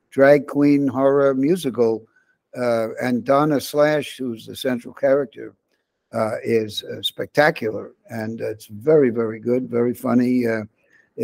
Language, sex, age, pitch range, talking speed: English, male, 60-79, 115-140 Hz, 135 wpm